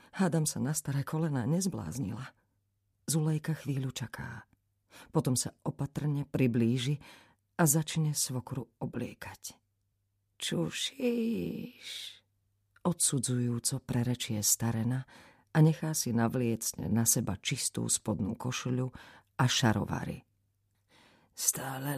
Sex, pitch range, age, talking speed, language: female, 110-185 Hz, 40-59, 90 wpm, Slovak